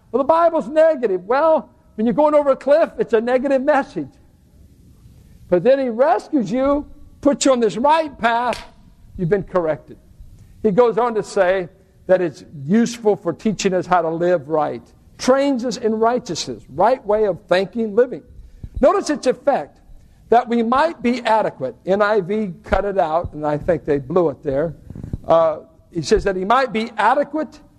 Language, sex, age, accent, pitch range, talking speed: English, male, 60-79, American, 185-265 Hz, 175 wpm